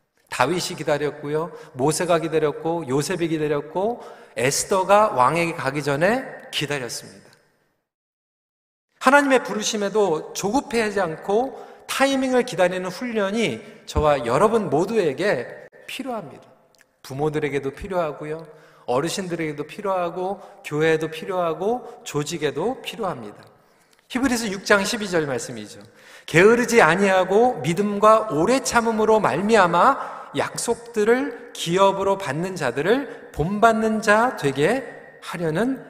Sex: male